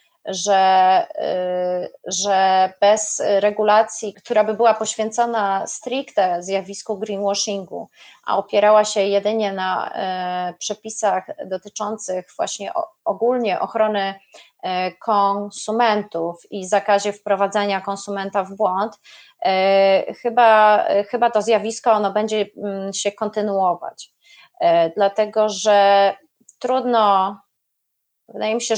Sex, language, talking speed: female, Polish, 90 wpm